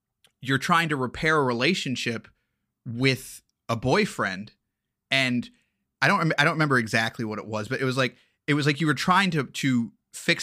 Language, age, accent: English, 30-49, American